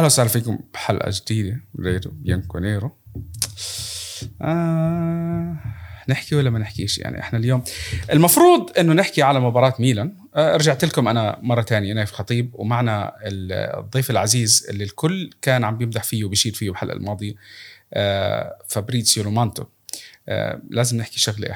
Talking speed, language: 135 wpm, Arabic